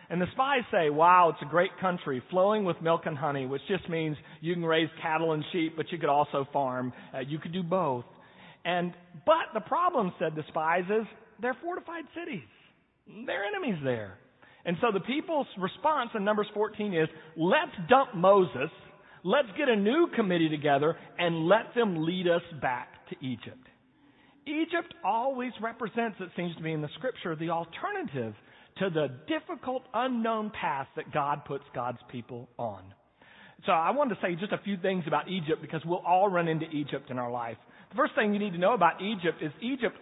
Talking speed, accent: 190 wpm, American